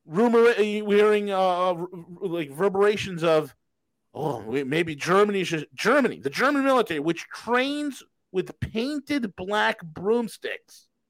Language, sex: English, male